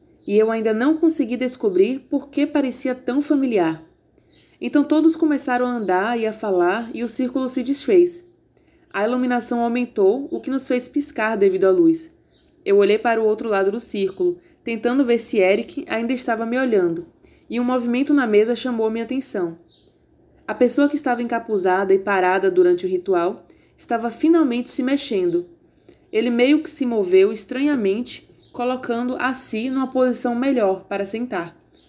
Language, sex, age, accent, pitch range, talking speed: Portuguese, female, 20-39, Brazilian, 205-265 Hz, 165 wpm